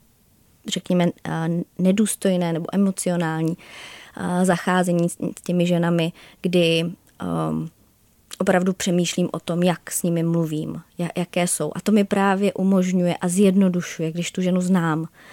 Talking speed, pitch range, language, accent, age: 115 wpm, 165-185 Hz, Czech, native, 20-39